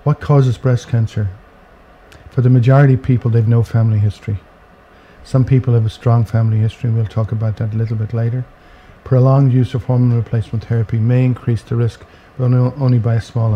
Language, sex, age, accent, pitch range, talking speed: English, male, 50-69, Irish, 110-125 Hz, 195 wpm